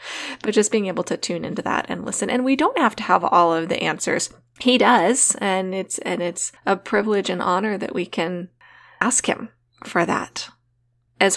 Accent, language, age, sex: American, English, 20-39, female